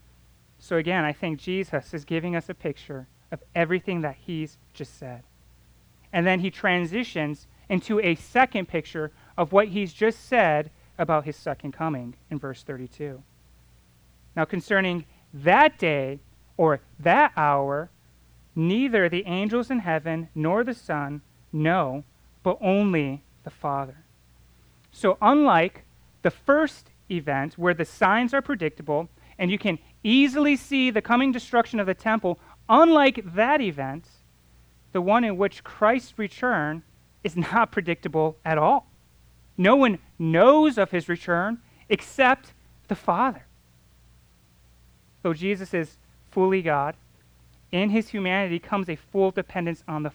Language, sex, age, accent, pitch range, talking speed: English, male, 30-49, American, 140-205 Hz, 135 wpm